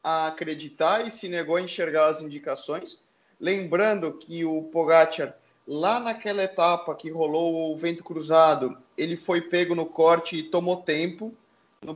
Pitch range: 155-190 Hz